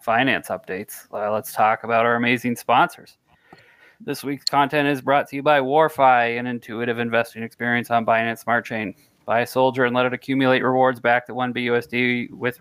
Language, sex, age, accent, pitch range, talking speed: English, male, 20-39, American, 115-135 Hz, 175 wpm